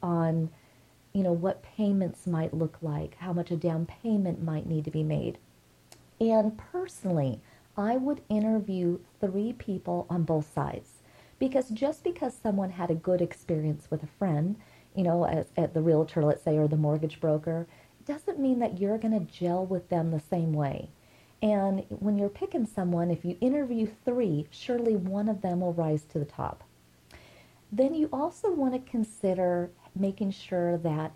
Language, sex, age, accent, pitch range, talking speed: English, female, 40-59, American, 160-215 Hz, 175 wpm